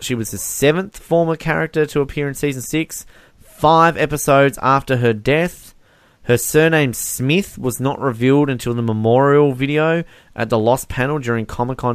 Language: English